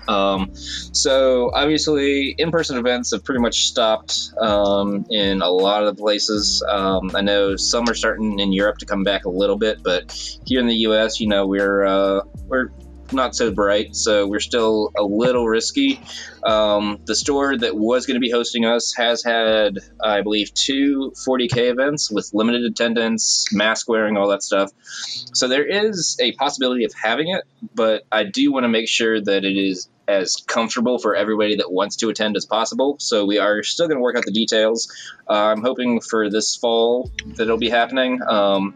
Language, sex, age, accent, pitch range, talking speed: English, male, 20-39, American, 100-120 Hz, 190 wpm